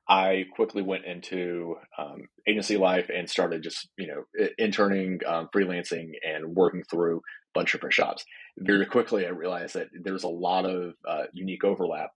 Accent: American